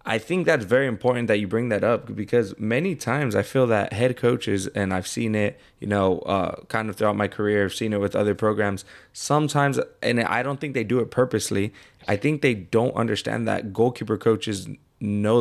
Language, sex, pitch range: English, male, 105-125 Hz